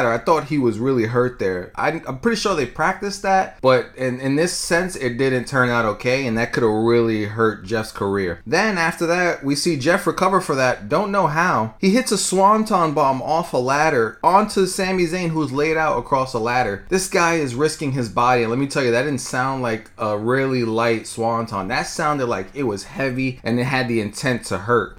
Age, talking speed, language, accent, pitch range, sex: 30-49, 225 wpm, English, American, 120-185 Hz, male